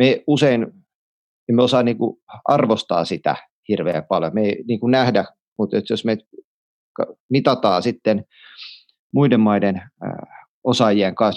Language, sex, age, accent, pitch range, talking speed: Finnish, male, 30-49, native, 100-125 Hz, 110 wpm